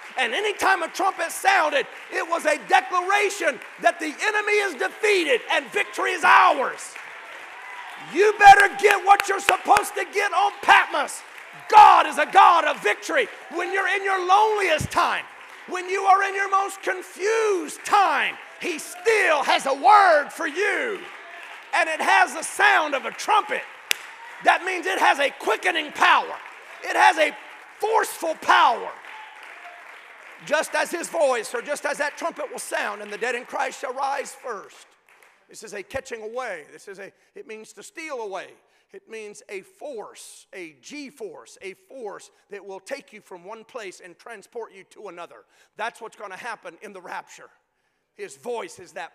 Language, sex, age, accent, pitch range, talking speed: English, male, 40-59, American, 310-410 Hz, 170 wpm